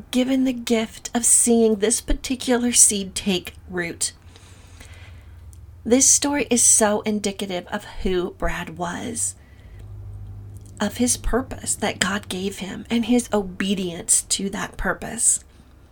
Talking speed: 120 wpm